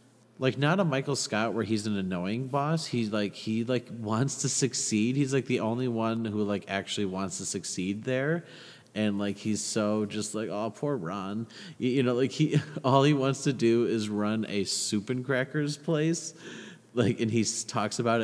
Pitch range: 95-120 Hz